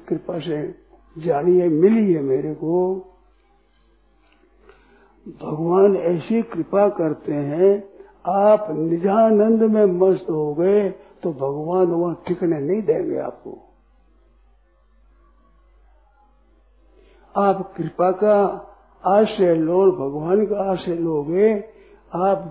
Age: 60-79